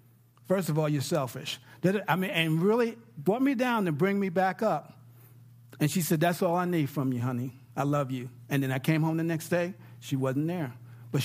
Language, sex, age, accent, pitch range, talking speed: English, male, 50-69, American, 135-200 Hz, 225 wpm